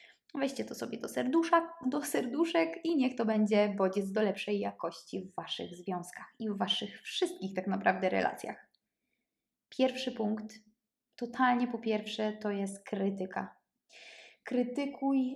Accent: native